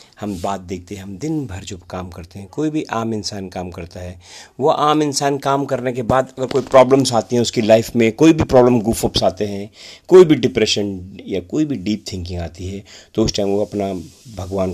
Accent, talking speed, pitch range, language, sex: native, 225 wpm, 95-140 Hz, Hindi, male